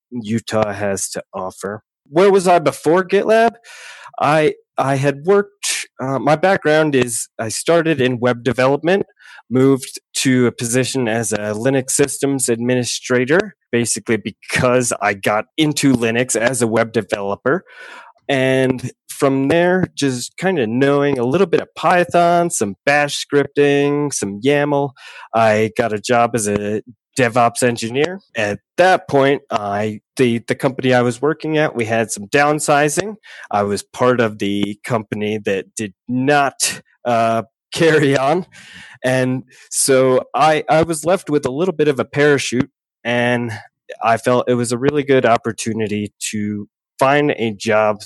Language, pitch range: English, 115-145 Hz